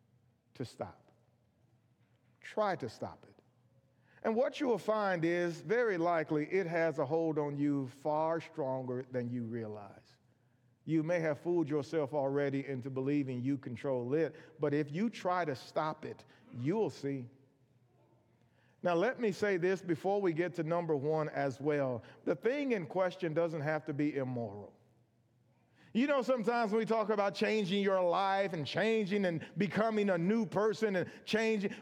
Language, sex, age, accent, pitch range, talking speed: English, male, 40-59, American, 130-205 Hz, 165 wpm